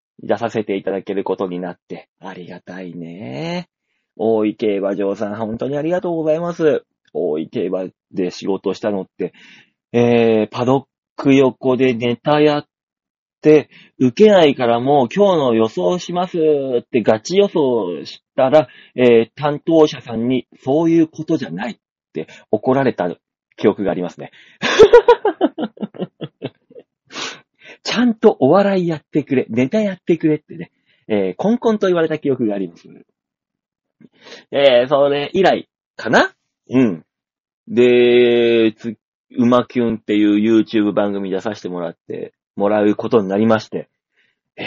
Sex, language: male, Japanese